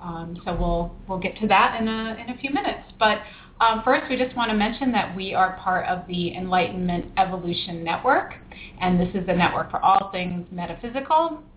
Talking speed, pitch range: 200 wpm, 175-220 Hz